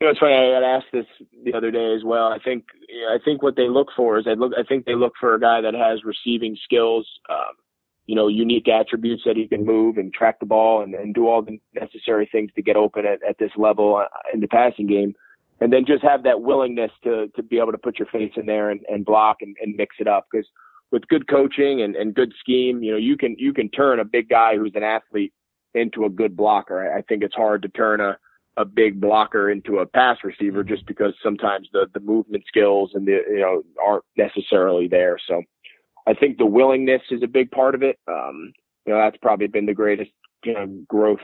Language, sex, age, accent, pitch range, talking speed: English, male, 30-49, American, 105-120 Hz, 240 wpm